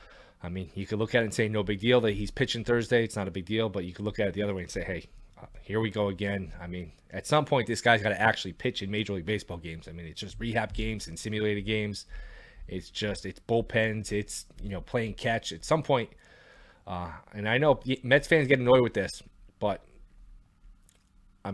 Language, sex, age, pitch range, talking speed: English, male, 20-39, 100-125 Hz, 240 wpm